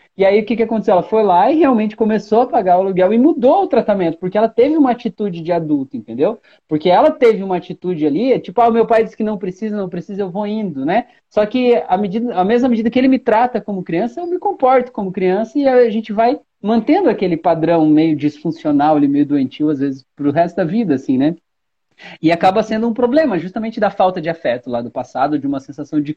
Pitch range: 175-255 Hz